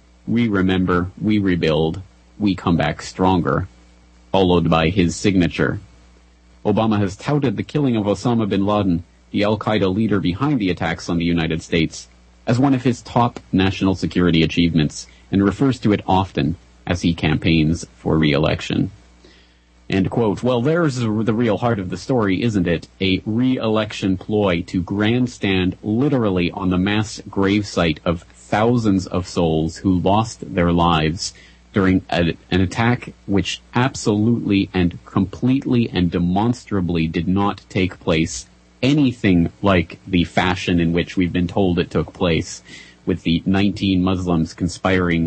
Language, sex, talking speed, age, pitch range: English, male, 145 wpm, 30-49, 85-105 Hz